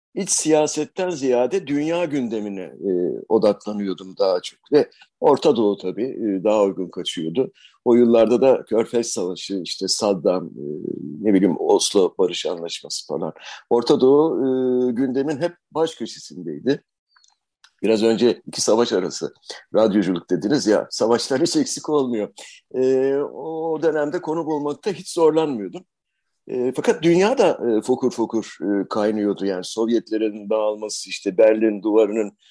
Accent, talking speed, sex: native, 125 wpm, male